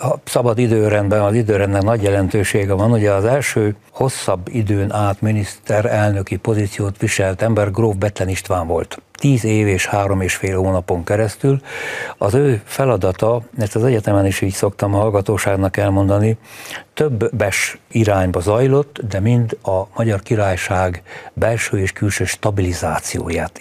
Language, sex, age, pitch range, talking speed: Hungarian, male, 60-79, 100-115 Hz, 140 wpm